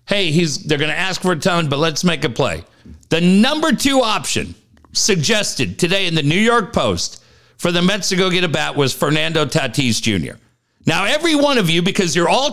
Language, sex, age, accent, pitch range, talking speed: English, male, 50-69, American, 120-190 Hz, 215 wpm